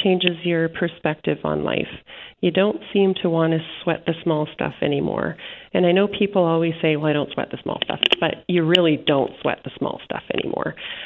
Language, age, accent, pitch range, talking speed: English, 40-59, American, 145-165 Hz, 205 wpm